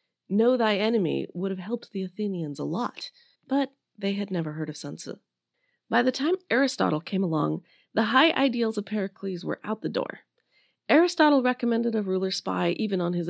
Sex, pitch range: female, 175-240 Hz